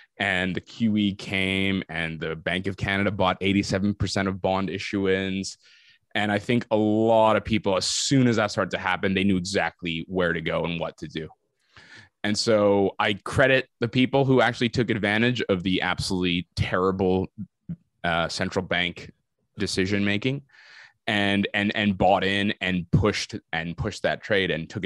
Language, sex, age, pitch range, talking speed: English, male, 20-39, 95-115 Hz, 170 wpm